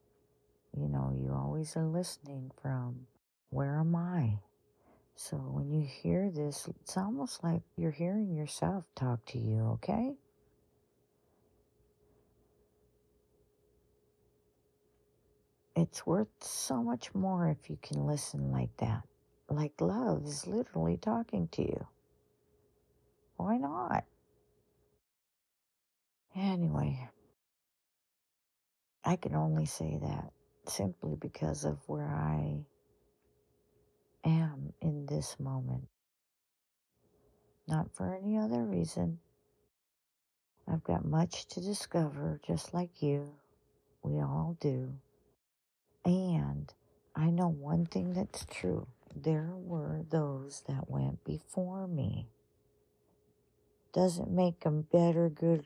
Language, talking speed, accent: English, 100 wpm, American